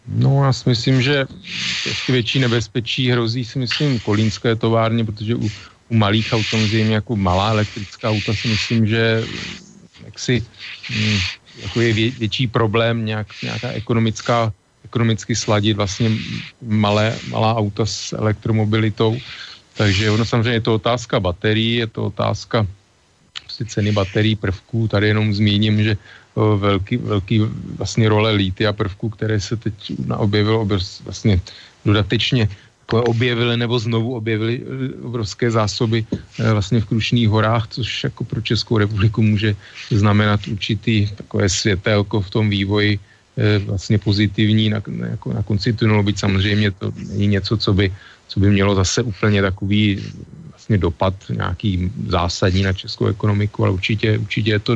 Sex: male